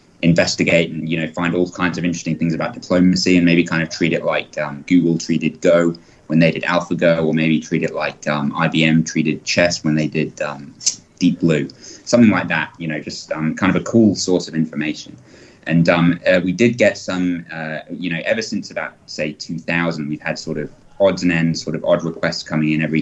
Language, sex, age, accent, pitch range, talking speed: English, male, 20-39, British, 80-85 Hz, 220 wpm